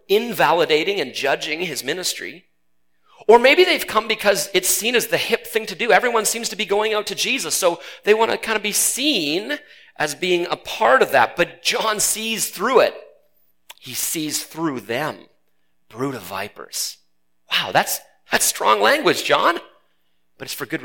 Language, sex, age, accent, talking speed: English, male, 40-59, American, 180 wpm